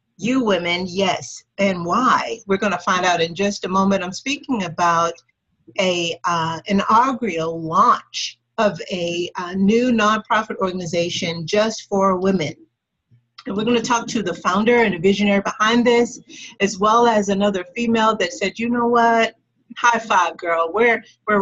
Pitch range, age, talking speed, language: 180-225 Hz, 50-69, 160 wpm, English